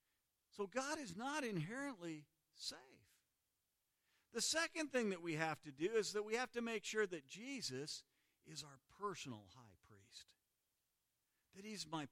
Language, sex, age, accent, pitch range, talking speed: English, male, 50-69, American, 160-230 Hz, 155 wpm